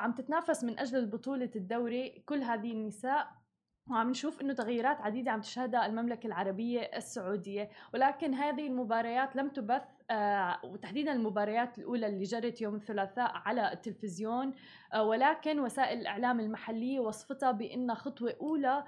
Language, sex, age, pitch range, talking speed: Arabic, female, 20-39, 220-265 Hz, 135 wpm